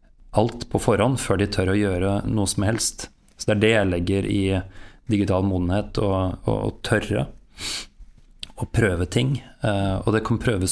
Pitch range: 100-115 Hz